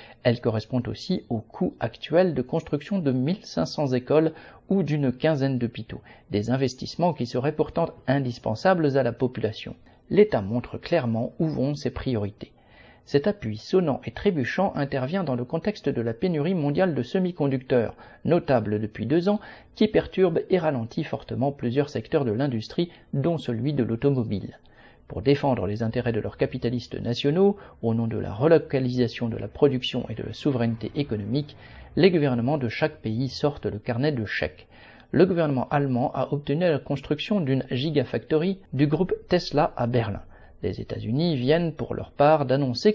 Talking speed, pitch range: 160 wpm, 120-155 Hz